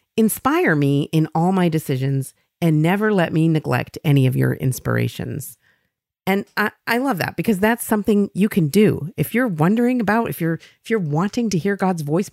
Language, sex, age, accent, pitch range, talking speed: English, female, 40-59, American, 150-205 Hz, 190 wpm